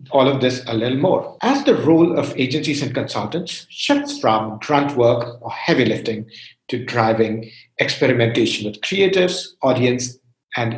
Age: 50-69